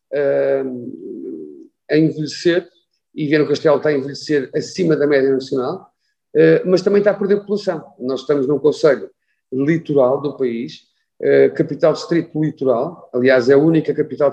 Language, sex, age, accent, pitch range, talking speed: Portuguese, male, 50-69, Portuguese, 135-200 Hz, 140 wpm